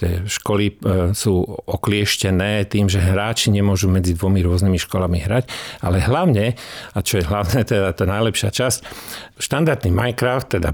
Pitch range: 95-115 Hz